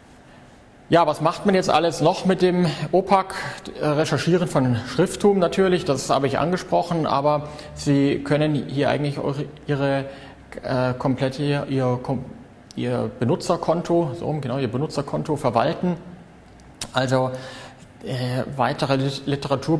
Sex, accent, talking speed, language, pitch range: male, German, 120 wpm, German, 130-155 Hz